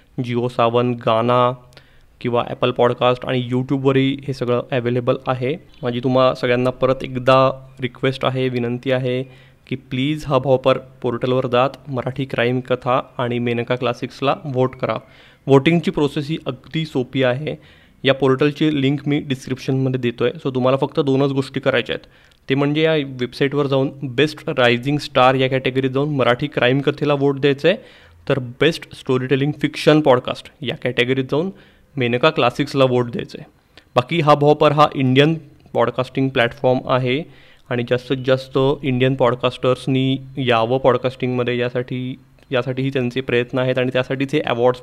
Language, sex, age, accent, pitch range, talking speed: Marathi, male, 20-39, native, 125-145 Hz, 135 wpm